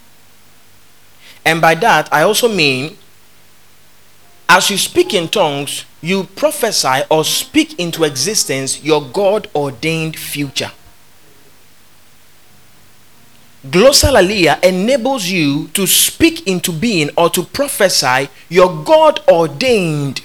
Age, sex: 30-49, male